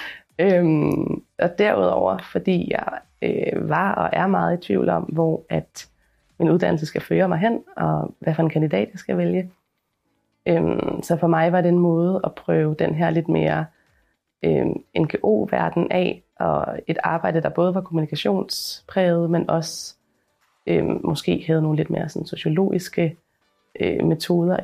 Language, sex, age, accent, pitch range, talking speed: Danish, female, 20-39, native, 160-185 Hz, 140 wpm